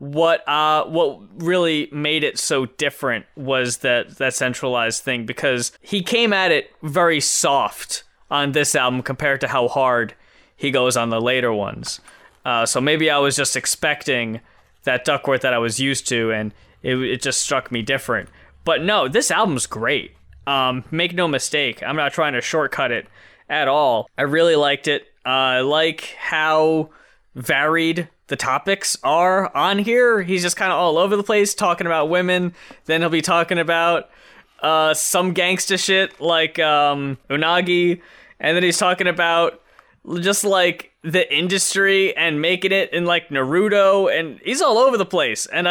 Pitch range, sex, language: 135-185 Hz, male, English